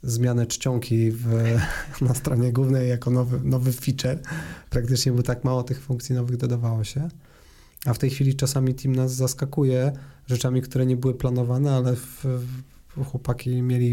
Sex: male